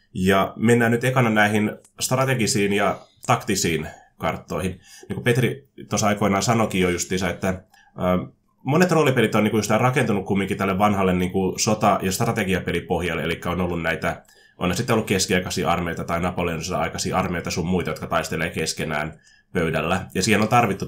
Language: Finnish